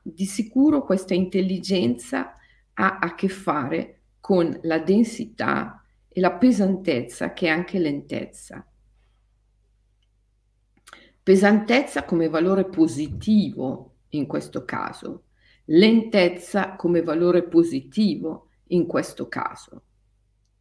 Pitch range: 150-215 Hz